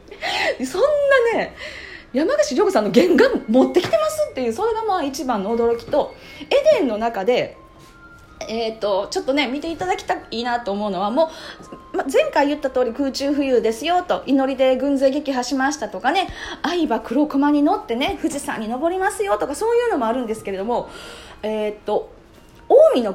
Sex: female